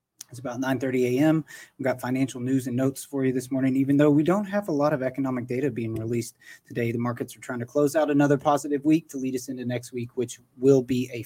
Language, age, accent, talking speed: English, 20-39, American, 250 wpm